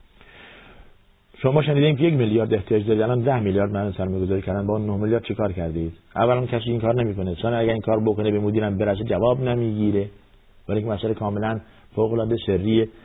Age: 50-69